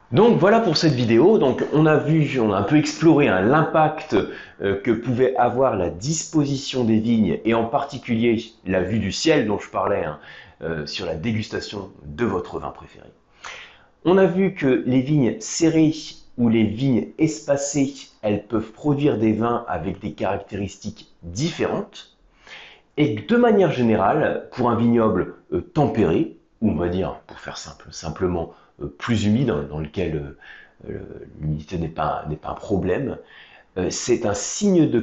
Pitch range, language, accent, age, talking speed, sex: 95-140 Hz, French, French, 30-49, 170 wpm, male